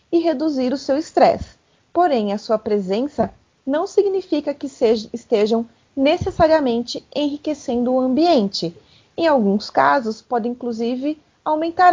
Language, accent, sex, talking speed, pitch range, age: Portuguese, Brazilian, female, 110 wpm, 210-285 Hz, 30-49